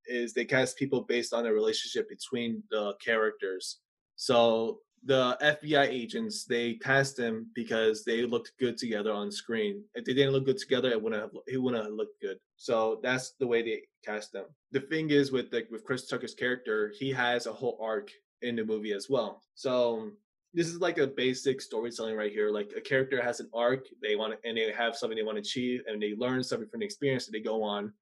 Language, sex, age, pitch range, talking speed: English, male, 20-39, 110-145 Hz, 215 wpm